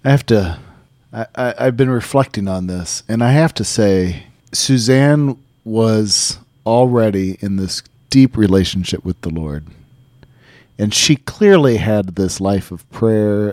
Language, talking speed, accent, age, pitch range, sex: English, 135 wpm, American, 40-59, 100-130 Hz, male